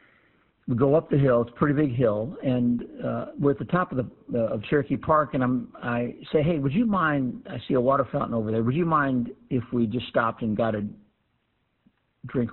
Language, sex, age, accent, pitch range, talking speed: English, male, 50-69, American, 120-140 Hz, 230 wpm